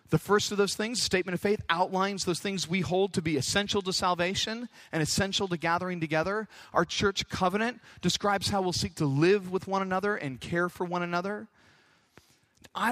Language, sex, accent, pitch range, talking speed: English, male, American, 160-205 Hz, 190 wpm